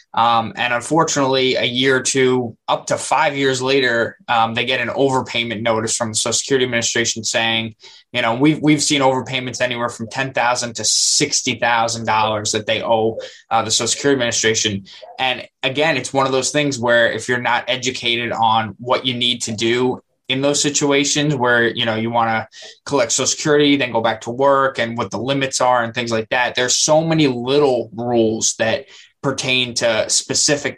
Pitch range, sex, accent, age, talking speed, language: 115-140 Hz, male, American, 20-39, 185 wpm, English